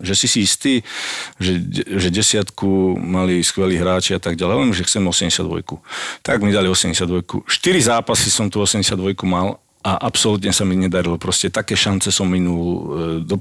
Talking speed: 155 wpm